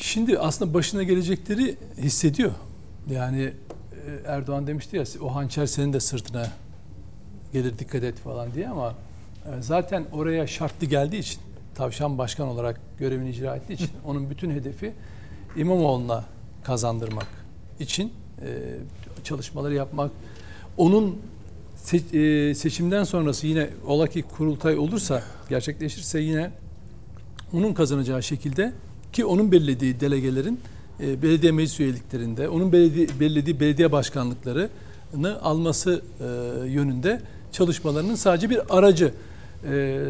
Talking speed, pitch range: 105 wpm, 125-180 Hz